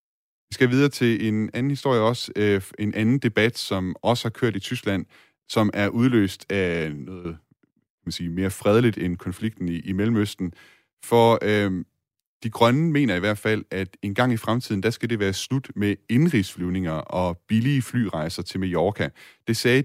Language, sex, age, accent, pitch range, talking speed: Danish, male, 30-49, native, 90-115 Hz, 170 wpm